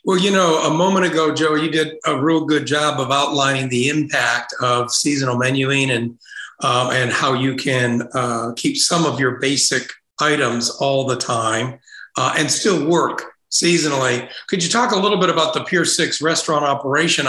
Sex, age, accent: male, 50-69, American